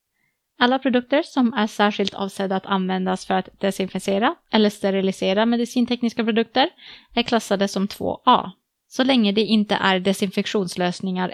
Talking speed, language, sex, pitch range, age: 130 wpm, Swedish, female, 190-235 Hz, 20-39